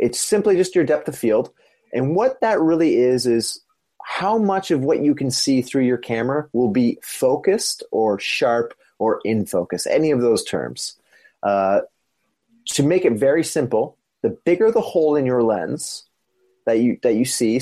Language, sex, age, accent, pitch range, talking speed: English, male, 30-49, American, 115-195 Hz, 180 wpm